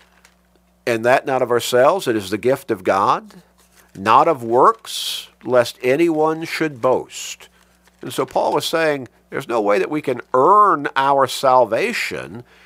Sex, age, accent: male, 50-69, American